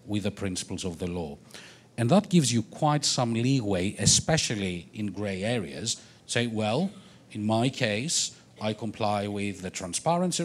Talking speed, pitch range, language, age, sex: 155 wpm, 100-130 Hz, English, 50-69, male